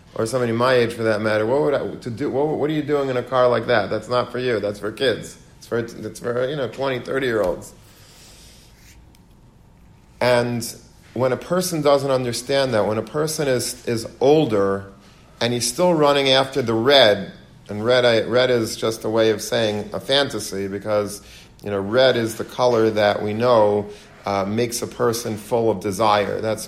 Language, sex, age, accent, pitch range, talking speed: English, male, 40-59, American, 105-125 Hz, 200 wpm